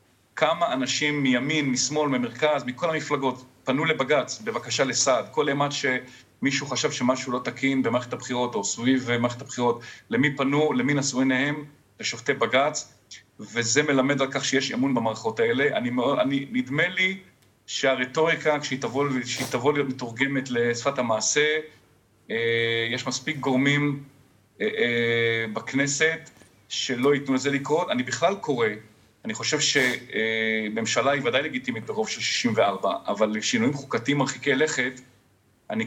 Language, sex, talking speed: Hebrew, male, 125 wpm